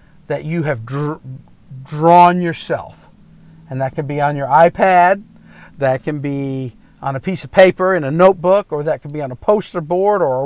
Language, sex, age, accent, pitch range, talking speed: English, male, 50-69, American, 145-185 Hz, 190 wpm